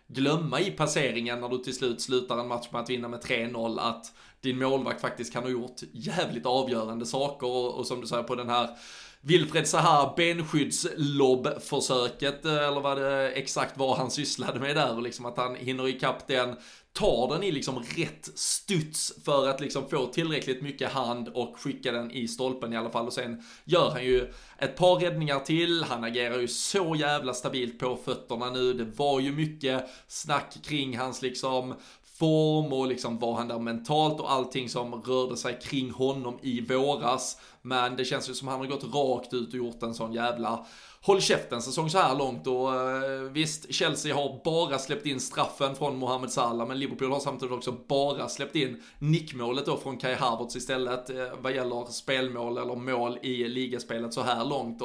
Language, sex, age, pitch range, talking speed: Swedish, male, 20-39, 125-140 Hz, 190 wpm